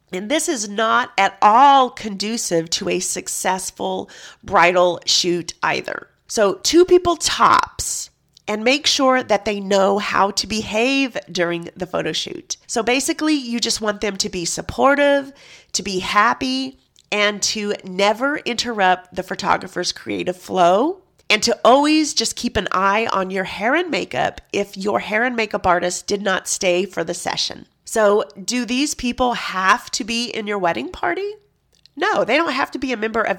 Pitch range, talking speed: 190-250 Hz, 170 wpm